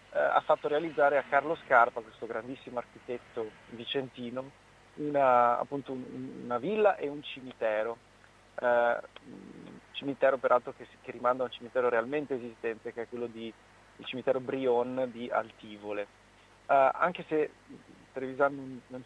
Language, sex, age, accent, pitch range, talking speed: Italian, male, 30-49, native, 115-140 Hz, 135 wpm